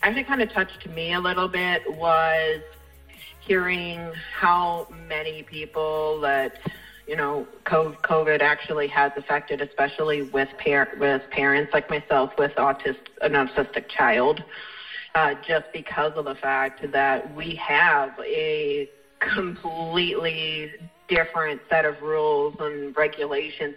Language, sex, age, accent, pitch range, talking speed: English, female, 40-59, American, 150-215 Hz, 125 wpm